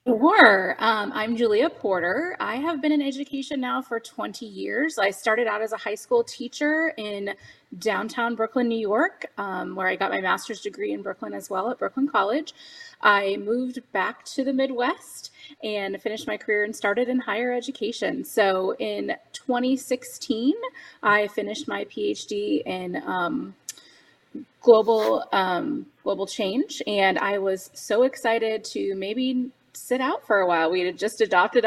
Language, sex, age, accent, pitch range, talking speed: English, female, 20-39, American, 190-255 Hz, 160 wpm